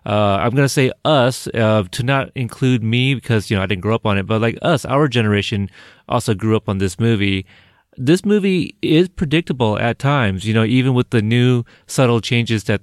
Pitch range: 105-130 Hz